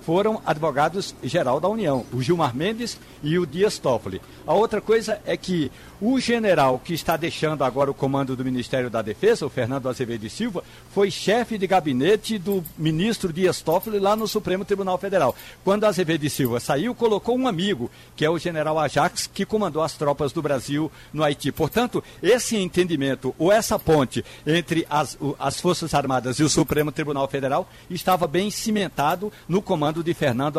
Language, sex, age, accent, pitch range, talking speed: Portuguese, male, 60-79, Brazilian, 145-195 Hz, 175 wpm